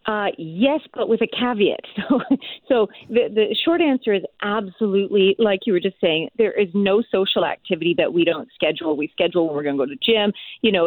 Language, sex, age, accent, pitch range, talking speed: English, female, 40-59, American, 170-215 Hz, 220 wpm